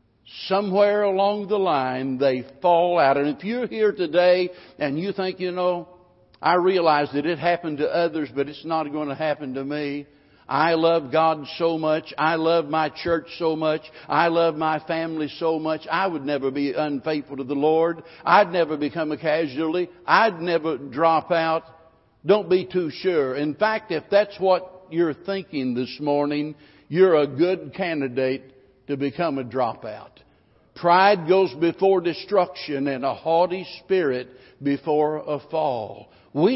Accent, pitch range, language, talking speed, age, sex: American, 145-180 Hz, English, 160 wpm, 60-79, male